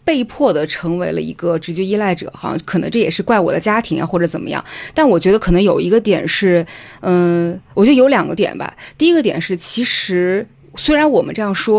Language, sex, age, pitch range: Chinese, female, 20-39, 170-225 Hz